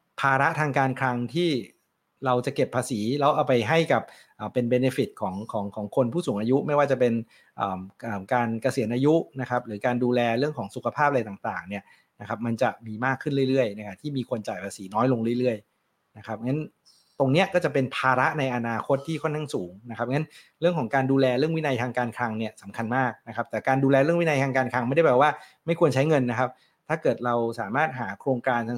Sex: male